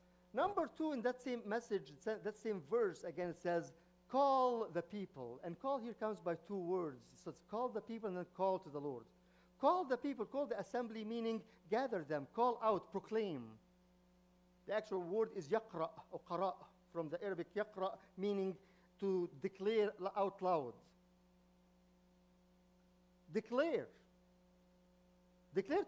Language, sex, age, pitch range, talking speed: English, male, 50-69, 150-215 Hz, 145 wpm